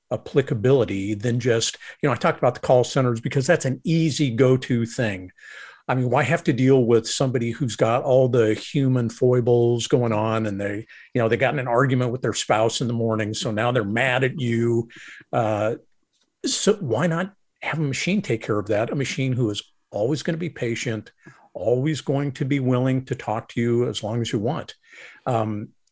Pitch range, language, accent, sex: 115-155 Hz, English, American, male